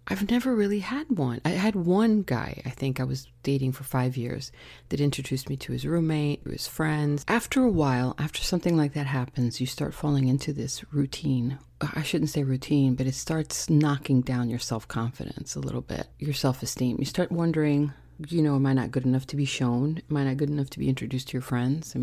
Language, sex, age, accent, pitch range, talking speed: English, female, 40-59, American, 130-155 Hz, 220 wpm